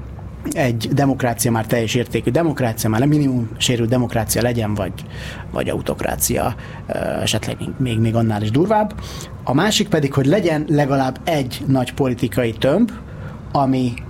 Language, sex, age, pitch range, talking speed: Hungarian, male, 30-49, 115-145 Hz, 135 wpm